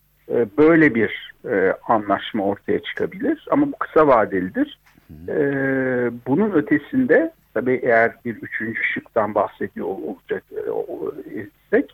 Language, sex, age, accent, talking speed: Turkish, male, 60-79, native, 100 wpm